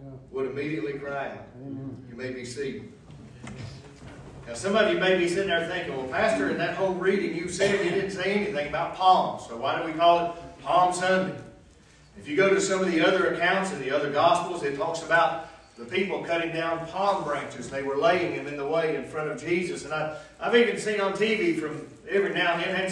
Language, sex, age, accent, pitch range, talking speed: English, male, 40-59, American, 155-205 Hz, 220 wpm